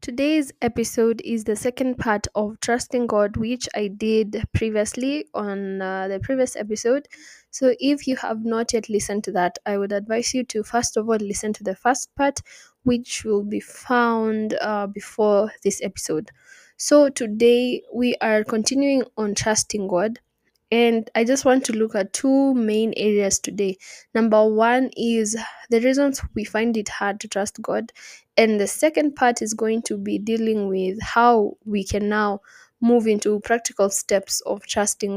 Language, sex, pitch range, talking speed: English, female, 210-245 Hz, 170 wpm